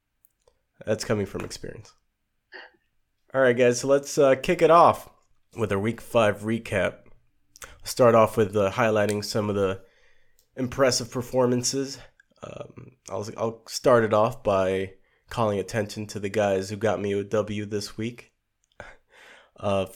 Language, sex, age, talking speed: English, male, 20-39, 145 wpm